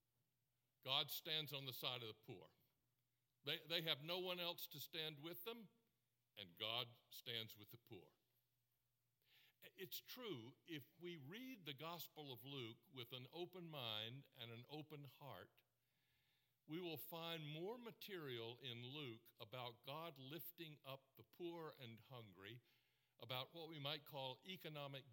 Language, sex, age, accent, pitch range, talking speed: English, male, 60-79, American, 120-155 Hz, 150 wpm